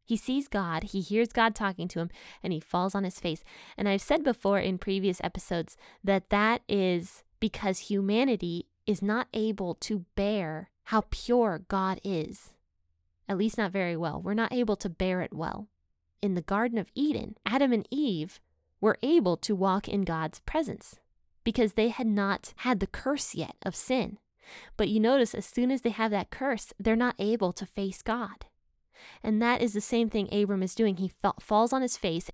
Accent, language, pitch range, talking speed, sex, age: American, English, 185-220 Hz, 190 wpm, female, 20-39